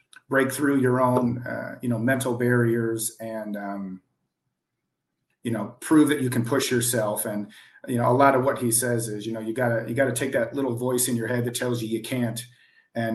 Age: 40-59